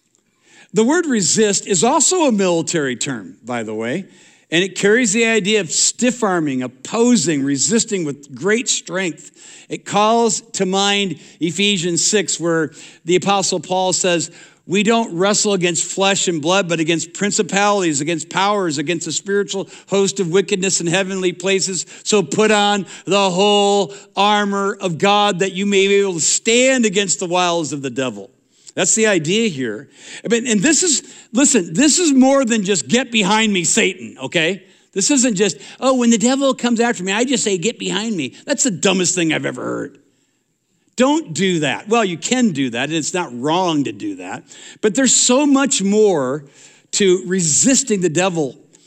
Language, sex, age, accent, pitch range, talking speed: English, male, 60-79, American, 175-225 Hz, 175 wpm